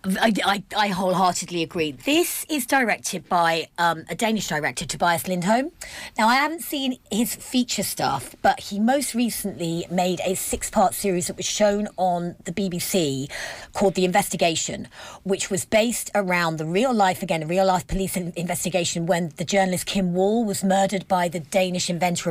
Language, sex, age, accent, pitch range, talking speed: English, female, 30-49, British, 175-215 Hz, 165 wpm